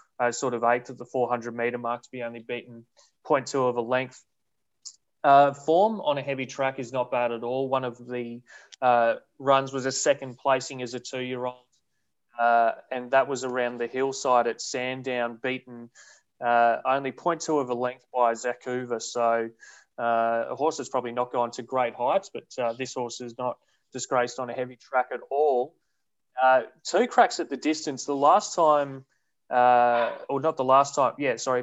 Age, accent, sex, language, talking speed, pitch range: 20-39, Australian, male, English, 190 wpm, 120-135 Hz